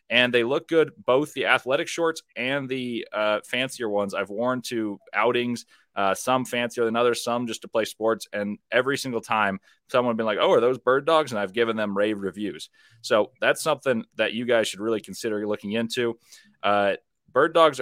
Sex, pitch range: male, 105-130 Hz